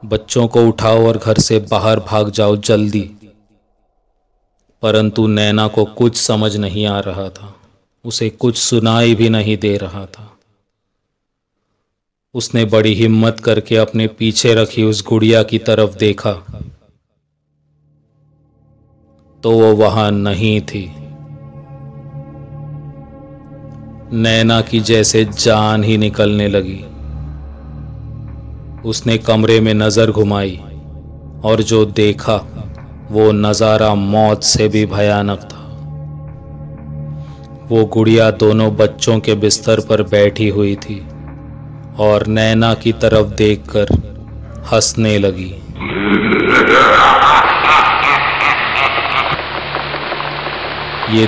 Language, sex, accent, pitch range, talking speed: Hindi, male, native, 100-115 Hz, 100 wpm